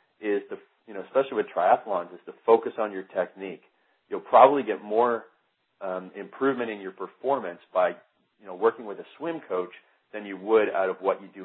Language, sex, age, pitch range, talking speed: English, male, 40-59, 95-135 Hz, 200 wpm